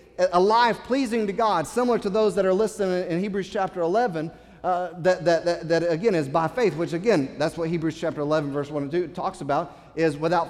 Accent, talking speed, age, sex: American, 225 wpm, 40-59, male